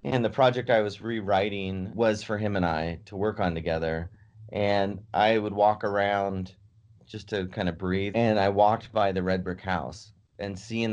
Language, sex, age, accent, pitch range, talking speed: English, male, 30-49, American, 90-105 Hz, 190 wpm